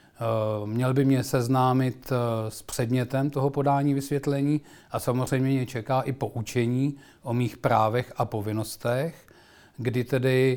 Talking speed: 125 wpm